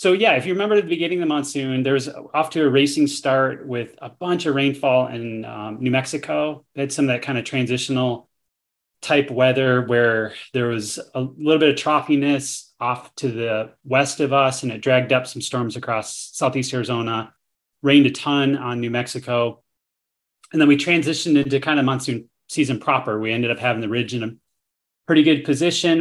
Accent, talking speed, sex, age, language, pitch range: American, 200 wpm, male, 30-49, English, 120-140 Hz